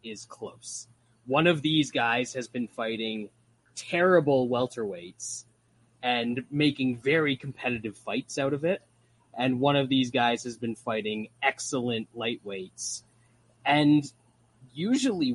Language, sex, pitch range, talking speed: English, male, 110-130 Hz, 120 wpm